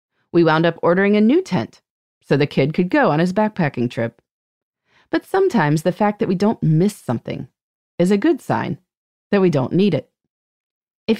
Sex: female